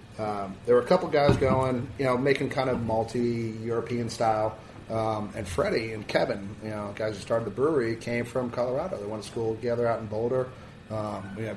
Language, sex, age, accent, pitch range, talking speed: English, male, 30-49, American, 110-120 Hz, 205 wpm